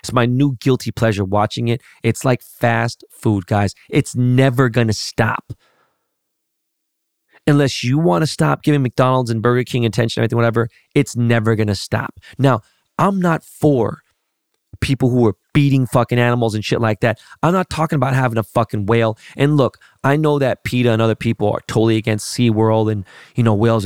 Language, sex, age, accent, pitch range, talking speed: English, male, 20-39, American, 115-145 Hz, 190 wpm